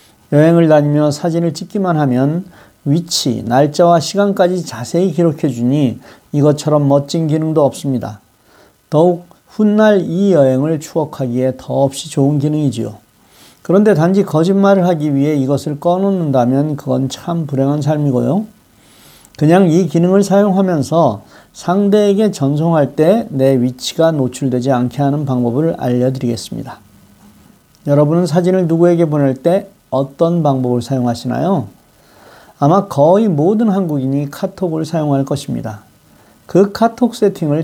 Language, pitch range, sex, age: Korean, 135-180 Hz, male, 40-59